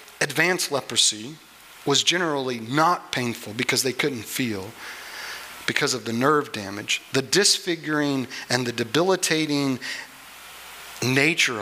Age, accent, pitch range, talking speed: 40-59, American, 120-160 Hz, 110 wpm